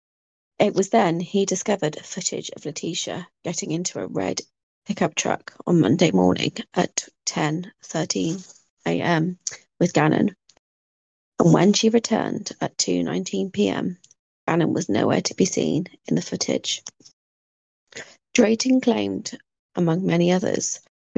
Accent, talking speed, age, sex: British, 120 wpm, 30-49, female